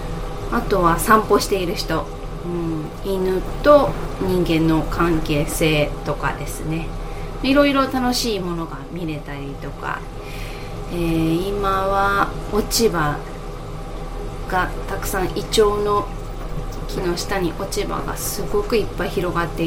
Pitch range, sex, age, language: 160-225 Hz, female, 20-39, Japanese